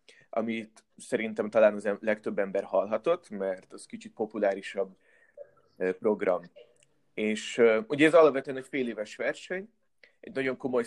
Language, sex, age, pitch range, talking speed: Hungarian, male, 30-49, 110-145 Hz, 125 wpm